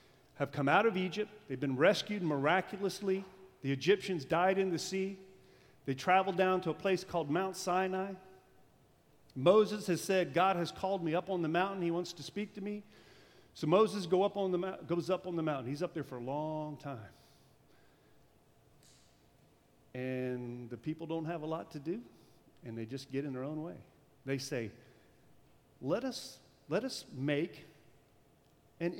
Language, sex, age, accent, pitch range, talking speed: English, male, 50-69, American, 140-200 Hz, 175 wpm